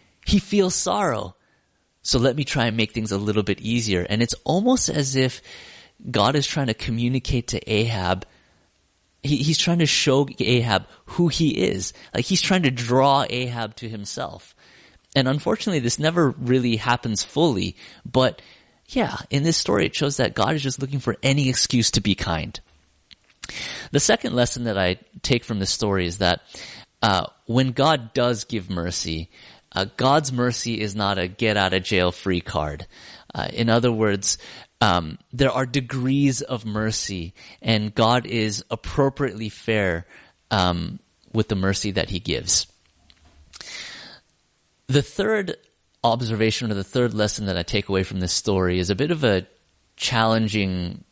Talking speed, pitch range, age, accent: 155 wpm, 95-130 Hz, 30-49, American